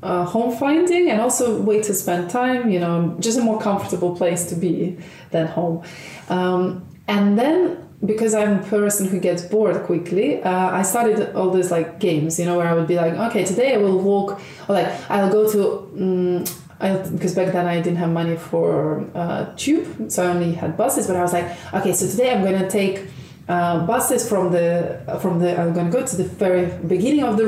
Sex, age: female, 20-39